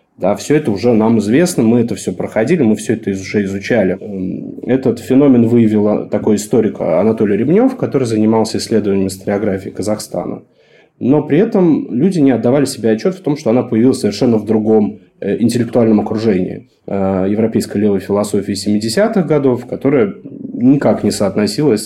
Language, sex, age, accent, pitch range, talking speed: Russian, male, 20-39, native, 100-125 Hz, 150 wpm